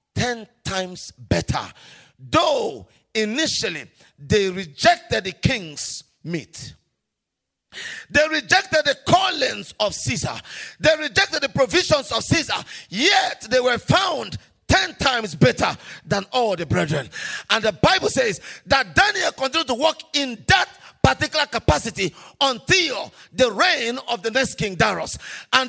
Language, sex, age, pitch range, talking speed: English, male, 40-59, 180-290 Hz, 130 wpm